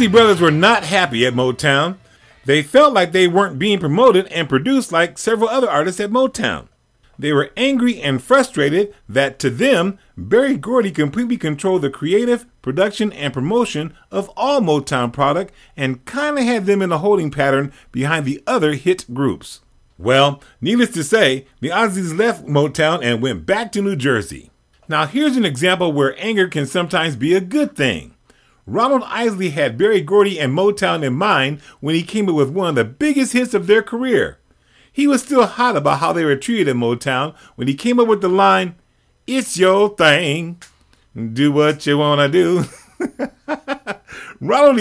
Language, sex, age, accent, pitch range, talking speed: English, male, 40-59, American, 145-225 Hz, 175 wpm